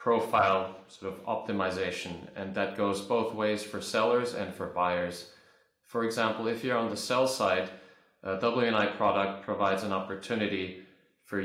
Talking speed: 145 wpm